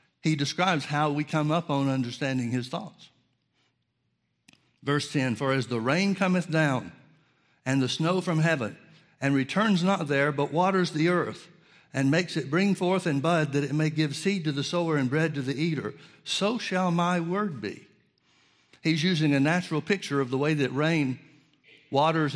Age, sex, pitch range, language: 60-79, male, 130-160 Hz, English